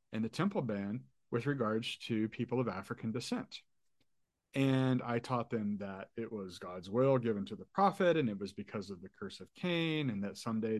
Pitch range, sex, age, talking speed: 105-155 Hz, male, 40-59, 200 wpm